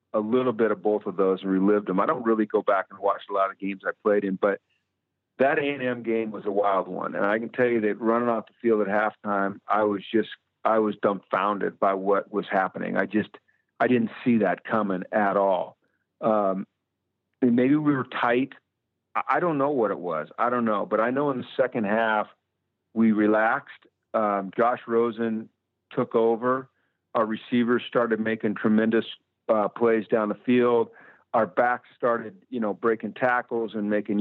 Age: 50-69